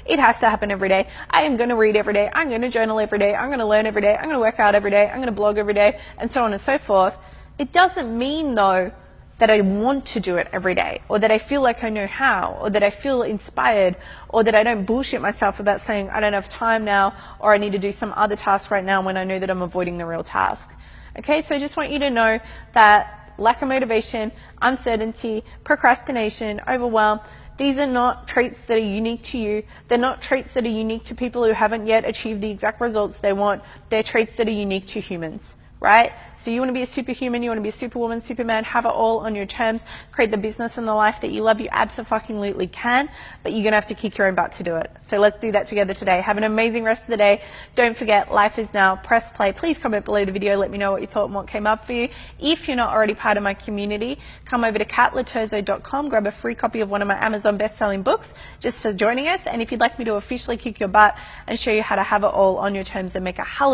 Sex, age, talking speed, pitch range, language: female, 20-39, 270 wpm, 205-240 Hz, English